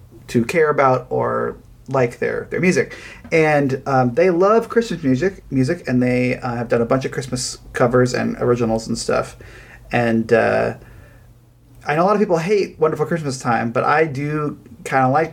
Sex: male